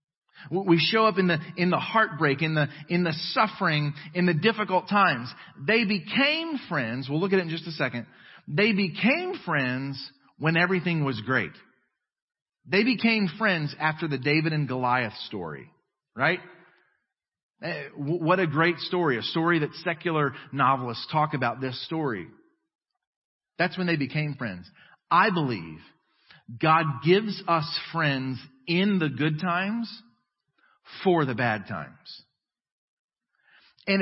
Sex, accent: male, American